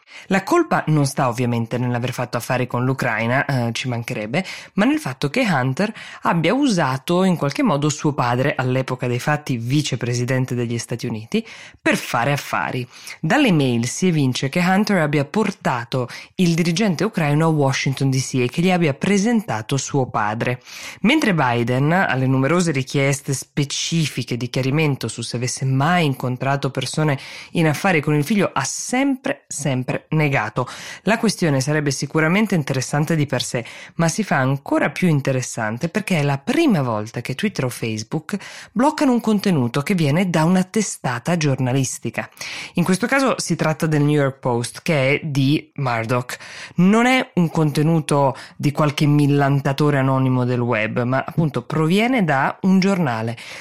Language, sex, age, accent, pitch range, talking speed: Italian, female, 20-39, native, 130-175 Hz, 155 wpm